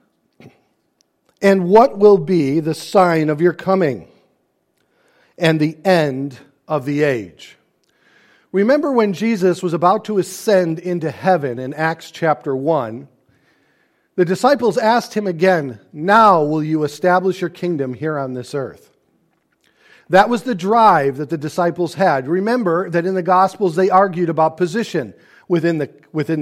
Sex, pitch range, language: male, 155-205 Hz, English